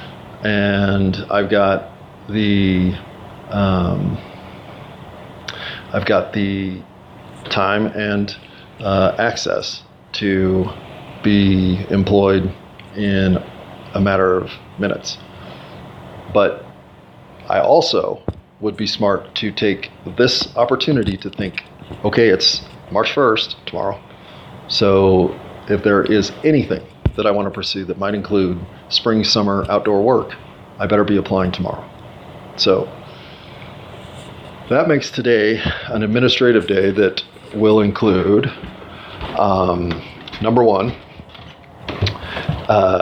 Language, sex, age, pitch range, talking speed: English, male, 40-59, 95-105 Hz, 100 wpm